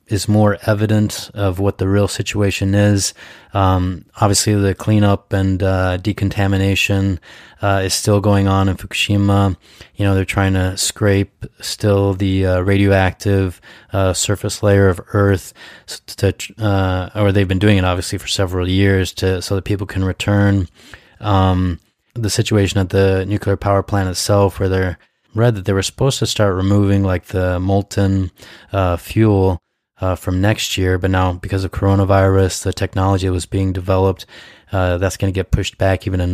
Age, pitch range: 30-49, 95-100 Hz